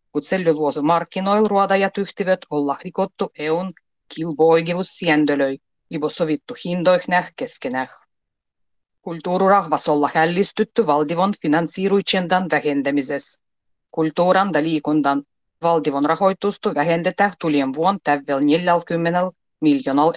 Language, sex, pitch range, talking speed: Finnish, female, 145-195 Hz, 85 wpm